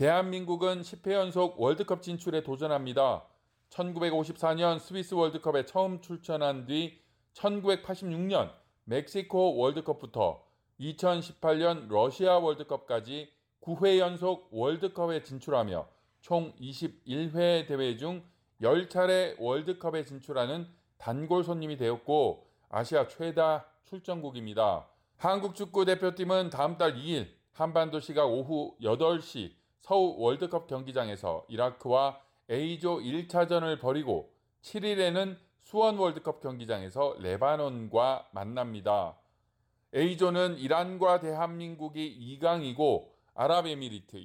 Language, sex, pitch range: Korean, male, 135-180 Hz